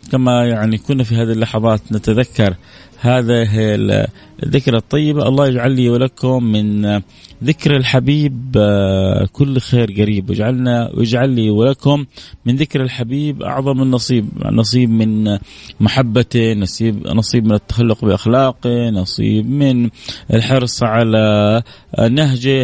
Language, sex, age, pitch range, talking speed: Arabic, male, 30-49, 105-130 Hz, 110 wpm